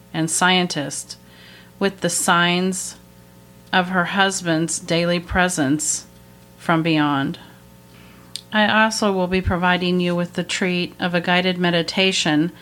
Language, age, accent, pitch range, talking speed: English, 40-59, American, 155-180 Hz, 120 wpm